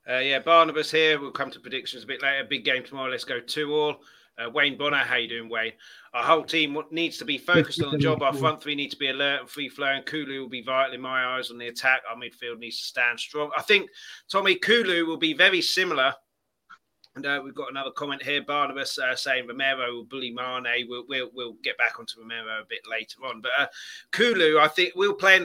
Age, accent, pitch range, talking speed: 30-49, British, 130-160 Hz, 240 wpm